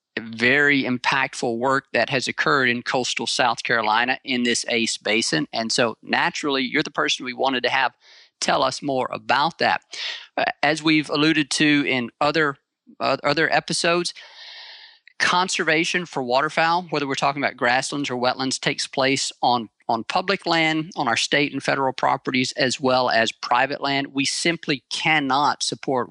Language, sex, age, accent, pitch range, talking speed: English, male, 40-59, American, 120-155 Hz, 160 wpm